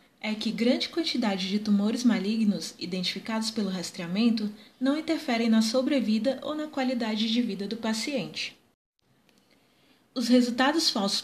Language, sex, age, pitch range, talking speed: Portuguese, female, 20-39, 210-255 Hz, 130 wpm